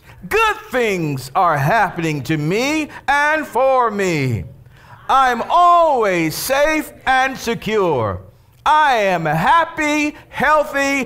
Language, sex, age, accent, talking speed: English, male, 50-69, American, 100 wpm